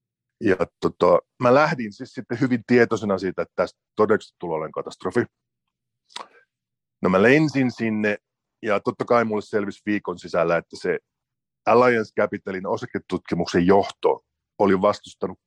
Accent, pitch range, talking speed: native, 95-135 Hz, 115 wpm